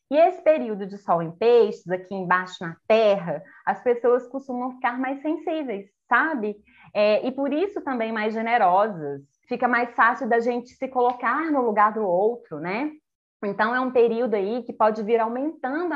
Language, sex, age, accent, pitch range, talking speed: Portuguese, female, 20-39, Brazilian, 200-260 Hz, 170 wpm